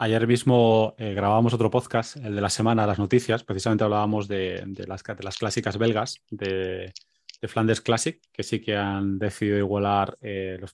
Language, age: Spanish, 20-39